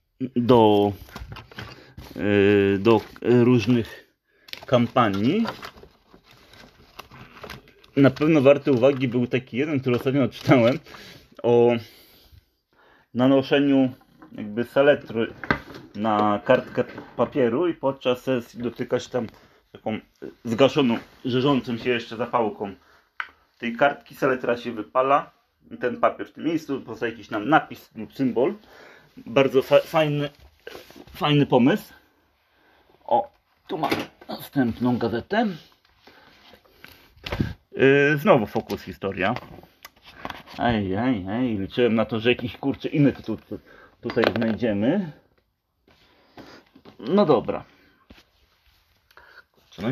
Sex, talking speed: male, 95 wpm